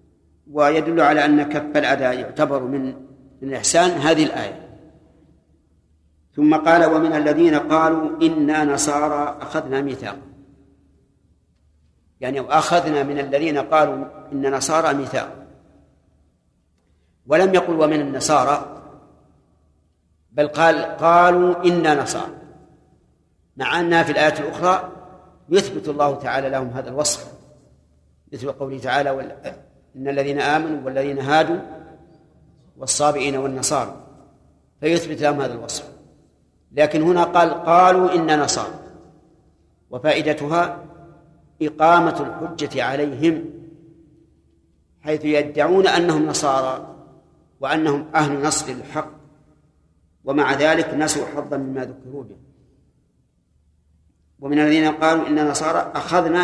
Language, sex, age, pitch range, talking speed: Arabic, male, 50-69, 130-160 Hz, 100 wpm